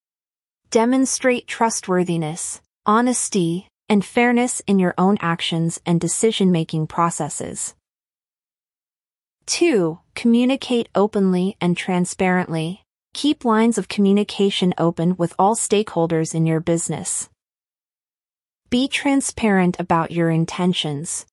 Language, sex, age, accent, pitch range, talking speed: English, female, 30-49, American, 170-215 Hz, 95 wpm